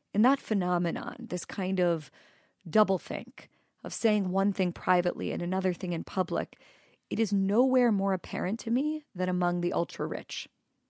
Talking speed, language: 155 wpm, English